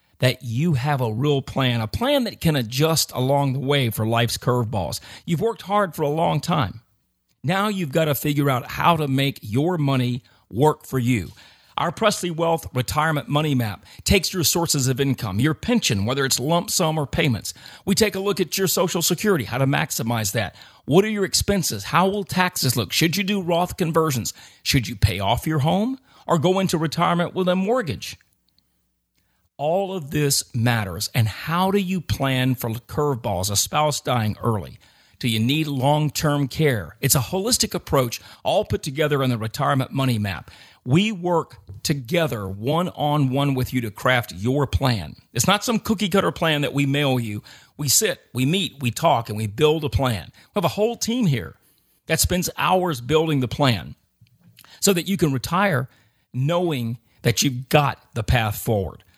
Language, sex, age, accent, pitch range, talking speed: English, male, 40-59, American, 120-170 Hz, 185 wpm